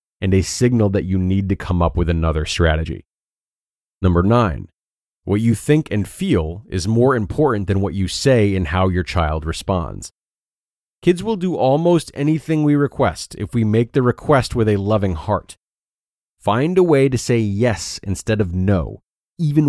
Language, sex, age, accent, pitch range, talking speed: English, male, 30-49, American, 95-135 Hz, 175 wpm